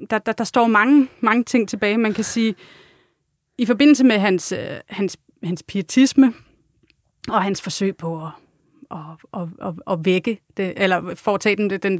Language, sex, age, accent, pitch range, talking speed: Danish, female, 30-49, native, 185-225 Hz, 170 wpm